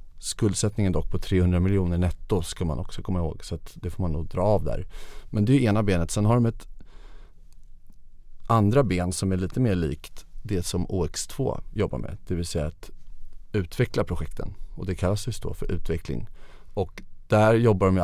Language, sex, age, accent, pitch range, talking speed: Swedish, male, 30-49, native, 85-100 Hz, 195 wpm